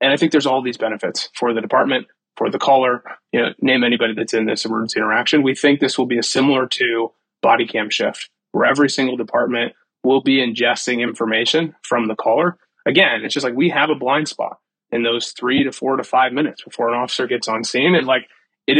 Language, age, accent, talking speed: English, 20-39, American, 225 wpm